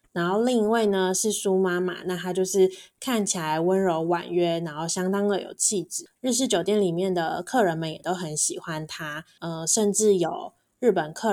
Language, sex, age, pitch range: Chinese, female, 20-39, 175-205 Hz